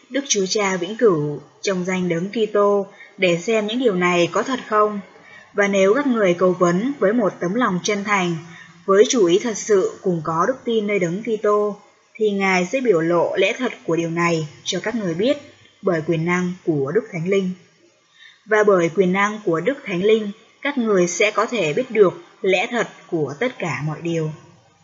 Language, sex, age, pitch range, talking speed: Vietnamese, female, 20-39, 175-225 Hz, 205 wpm